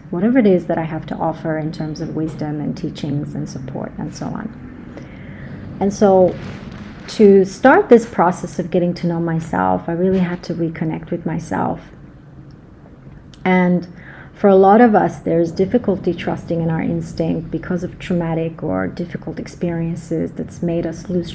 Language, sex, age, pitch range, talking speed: English, female, 30-49, 165-180 Hz, 165 wpm